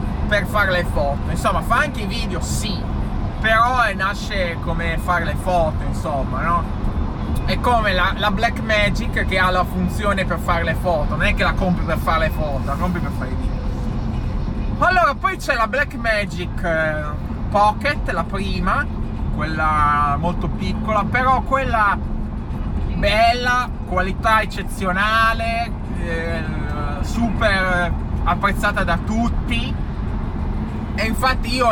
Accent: native